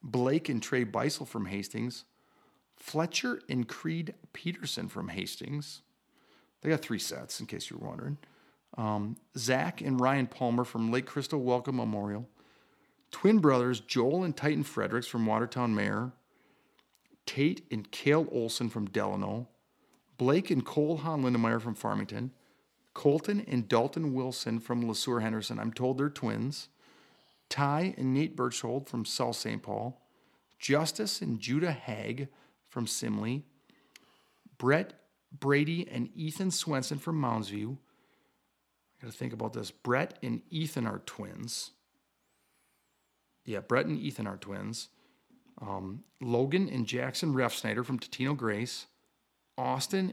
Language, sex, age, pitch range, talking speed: English, male, 40-59, 115-145 Hz, 130 wpm